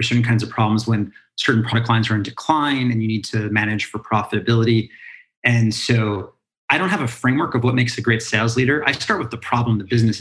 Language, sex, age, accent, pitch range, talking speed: English, male, 30-49, American, 110-125 Hz, 230 wpm